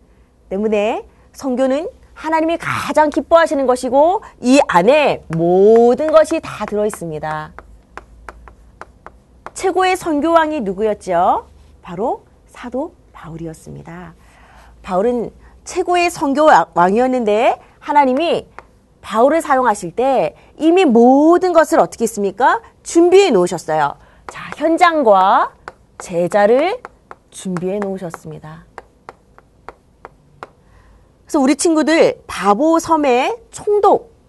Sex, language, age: female, Korean, 30-49